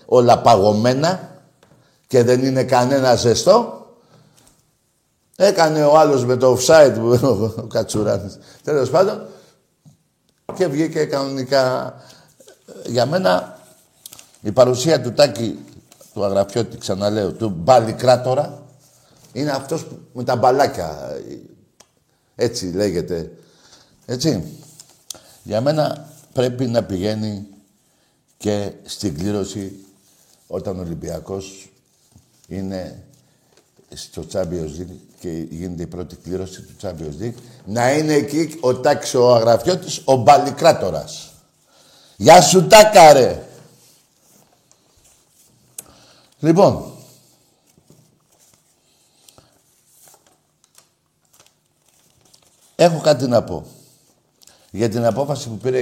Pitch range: 105-145 Hz